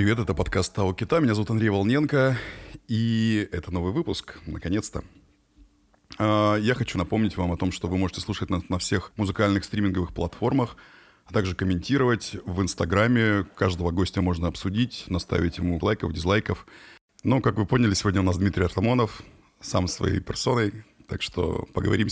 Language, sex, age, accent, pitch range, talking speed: Russian, male, 30-49, native, 90-110 Hz, 155 wpm